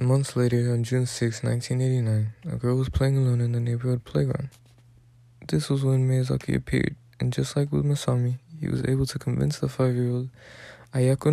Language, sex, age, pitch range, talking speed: English, male, 20-39, 120-135 Hz, 175 wpm